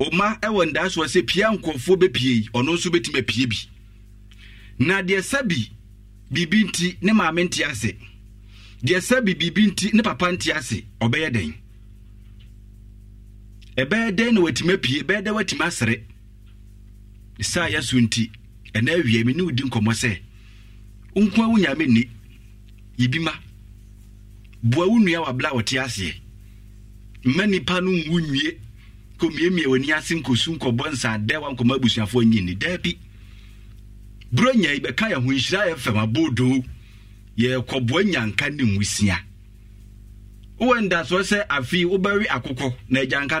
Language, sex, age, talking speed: English, male, 50-69, 125 wpm